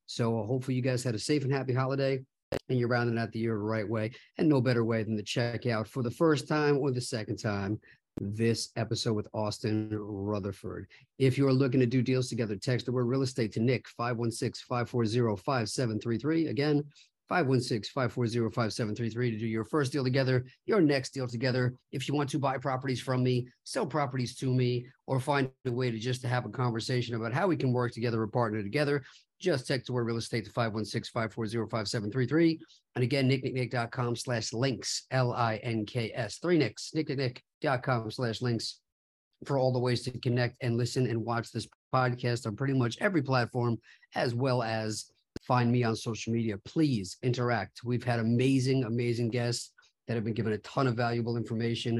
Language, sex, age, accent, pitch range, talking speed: English, male, 50-69, American, 115-130 Hz, 180 wpm